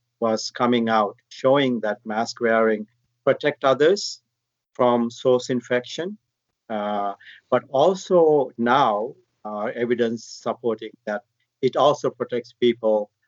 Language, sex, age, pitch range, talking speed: English, male, 50-69, 110-125 Hz, 110 wpm